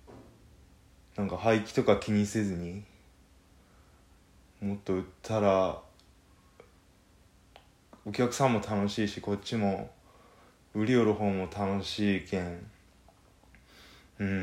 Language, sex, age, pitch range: Japanese, male, 20-39, 95-125 Hz